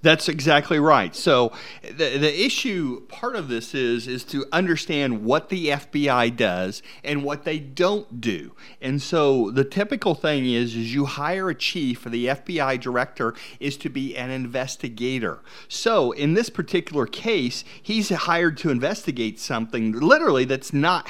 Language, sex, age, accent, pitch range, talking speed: English, male, 40-59, American, 125-170 Hz, 160 wpm